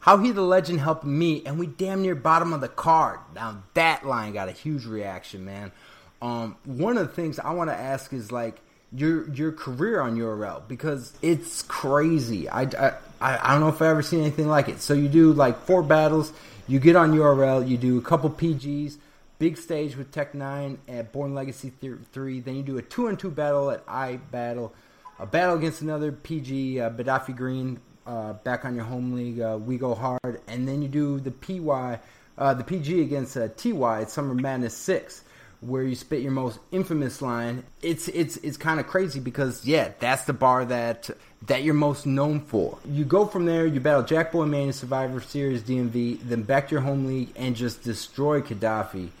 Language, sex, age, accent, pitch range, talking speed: English, male, 30-49, American, 125-155 Hz, 205 wpm